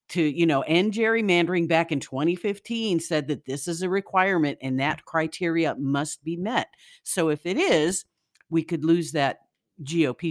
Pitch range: 145-180 Hz